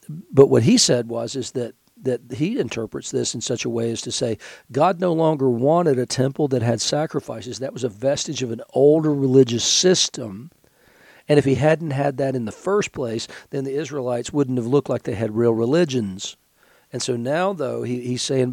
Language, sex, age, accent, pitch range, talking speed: English, male, 50-69, American, 120-145 Hz, 205 wpm